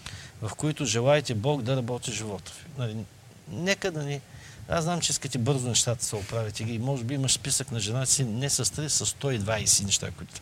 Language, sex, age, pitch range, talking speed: Bulgarian, male, 50-69, 110-140 Hz, 200 wpm